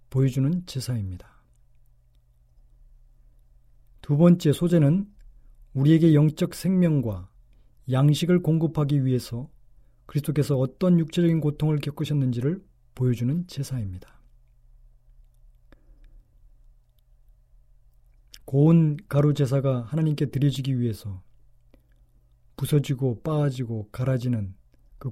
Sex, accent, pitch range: male, native, 115-155 Hz